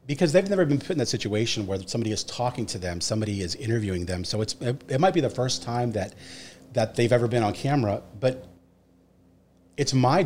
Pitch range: 105-140 Hz